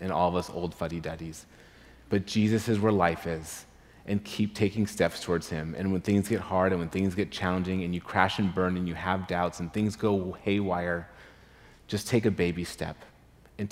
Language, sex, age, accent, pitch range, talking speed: English, male, 30-49, American, 90-105 Hz, 205 wpm